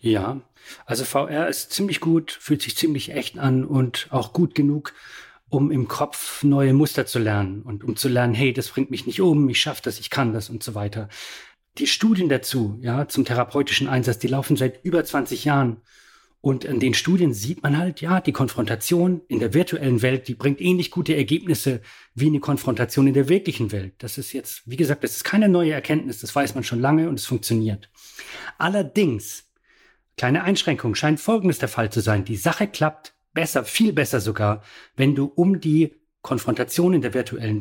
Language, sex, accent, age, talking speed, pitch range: German, male, German, 40-59, 195 wpm, 120-155 Hz